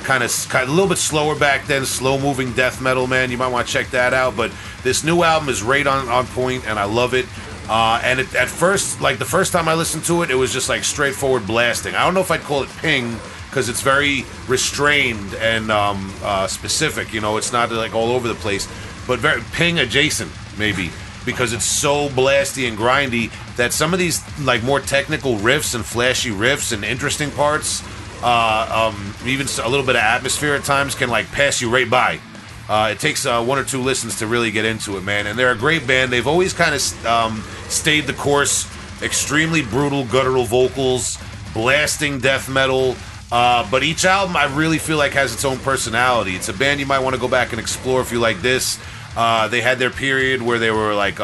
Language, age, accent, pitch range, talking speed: English, 30-49, American, 110-140 Hz, 220 wpm